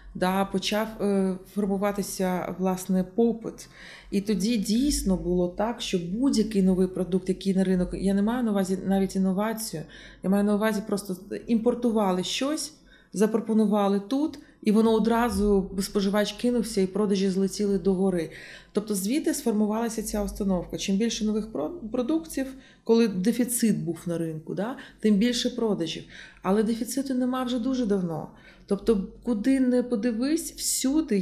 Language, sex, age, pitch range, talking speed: Ukrainian, female, 30-49, 190-240 Hz, 135 wpm